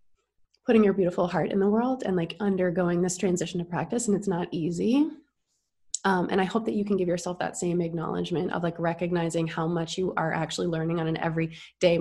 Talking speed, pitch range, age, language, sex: 210 wpm, 170-210 Hz, 20-39, English, female